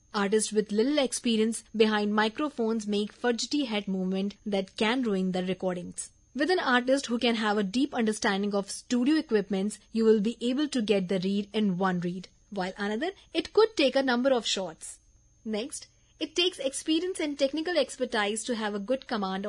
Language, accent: English, Indian